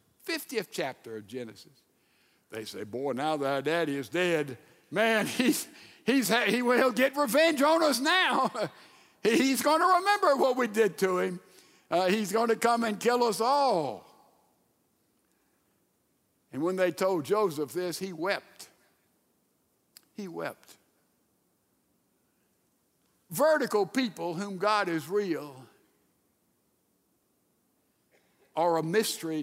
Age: 60-79